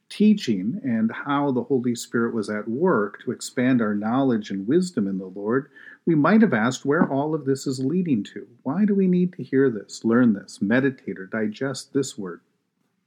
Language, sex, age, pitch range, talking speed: English, male, 50-69, 110-180 Hz, 195 wpm